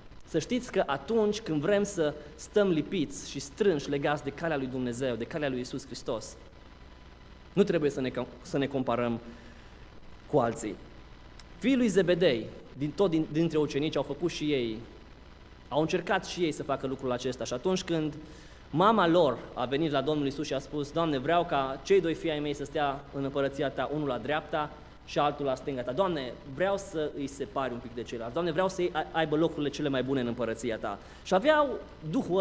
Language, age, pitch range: Romanian, 20-39, 130-170 Hz